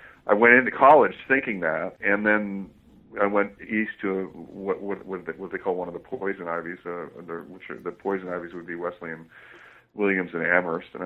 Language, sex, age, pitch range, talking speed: English, male, 40-59, 85-100 Hz, 195 wpm